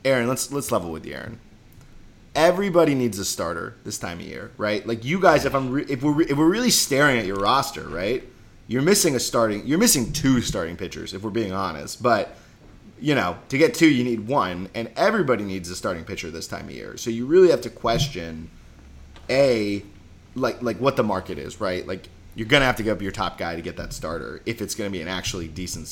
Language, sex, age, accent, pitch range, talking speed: English, male, 30-49, American, 95-130 Hz, 235 wpm